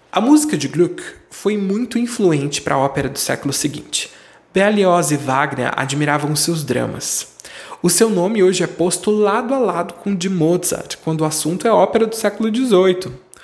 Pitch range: 145-195 Hz